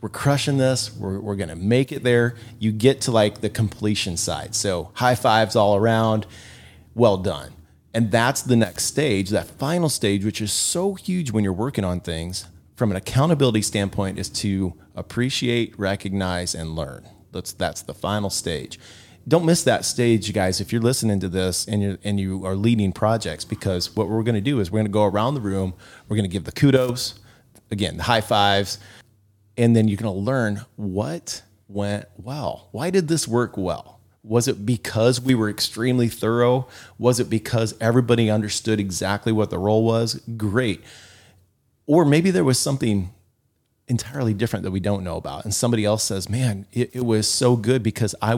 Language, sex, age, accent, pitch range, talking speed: English, male, 30-49, American, 100-120 Hz, 185 wpm